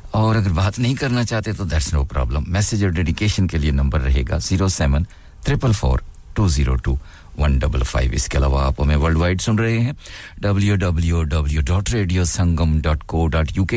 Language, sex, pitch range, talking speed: English, male, 75-100 Hz, 95 wpm